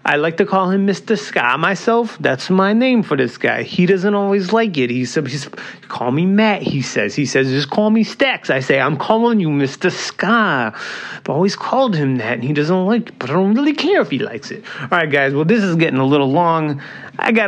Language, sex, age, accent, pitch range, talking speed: English, male, 30-49, American, 145-200 Hz, 240 wpm